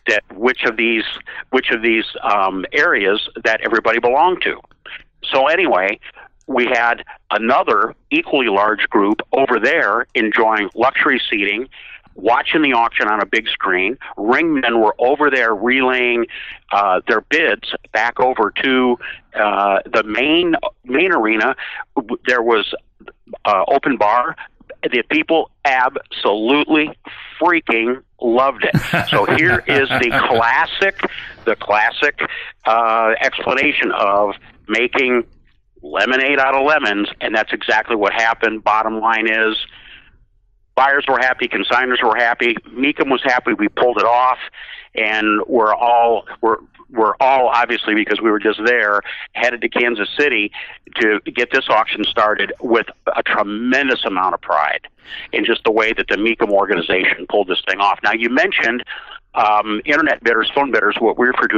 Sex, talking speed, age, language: male, 145 wpm, 50-69, English